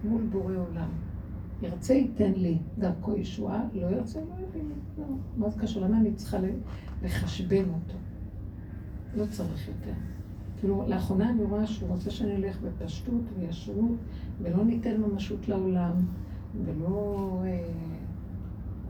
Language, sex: Hebrew, female